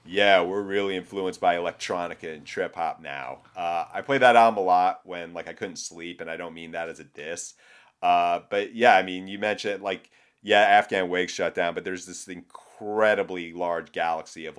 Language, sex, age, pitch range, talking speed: English, male, 30-49, 85-105 Hz, 205 wpm